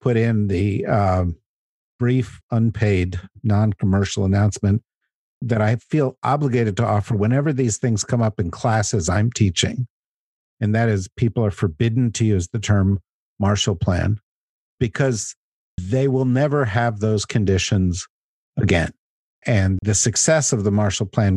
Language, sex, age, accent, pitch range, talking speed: English, male, 50-69, American, 100-125 Hz, 140 wpm